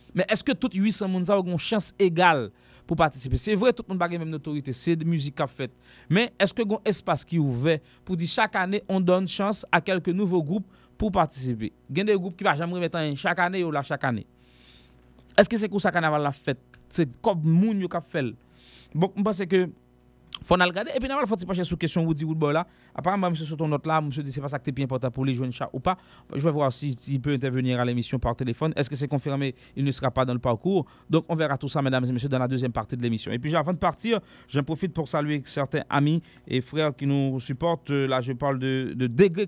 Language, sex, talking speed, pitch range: English, male, 245 wpm, 135-180 Hz